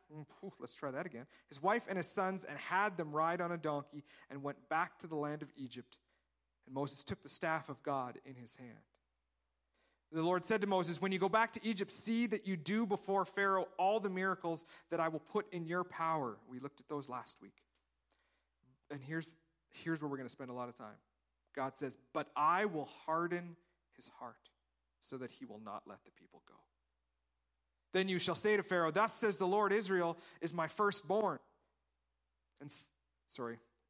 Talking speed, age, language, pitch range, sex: 200 wpm, 40-59, English, 120-180 Hz, male